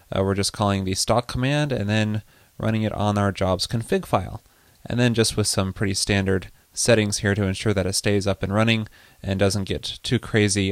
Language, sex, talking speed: English, male, 215 wpm